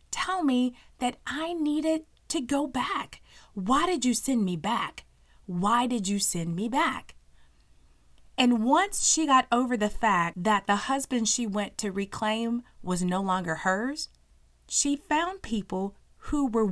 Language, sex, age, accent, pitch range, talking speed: English, female, 30-49, American, 185-250 Hz, 155 wpm